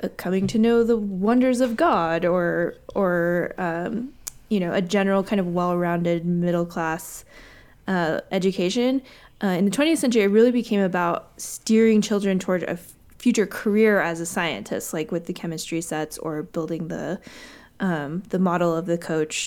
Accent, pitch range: American, 175-220 Hz